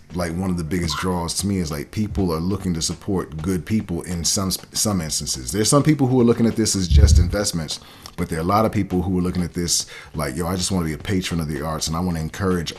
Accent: American